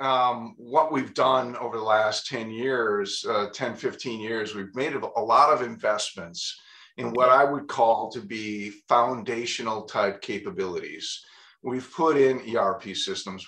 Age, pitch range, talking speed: 50-69, 105-135 Hz, 150 wpm